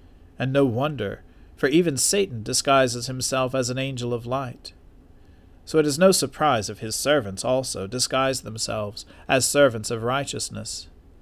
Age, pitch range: 40-59, 90-140 Hz